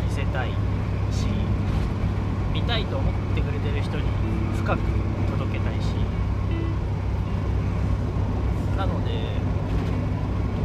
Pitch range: 90-100 Hz